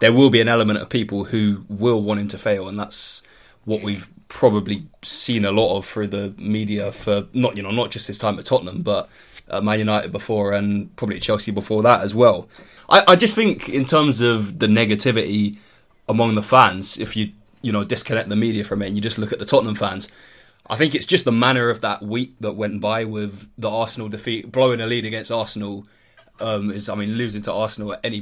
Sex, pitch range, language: male, 105-120 Hz, English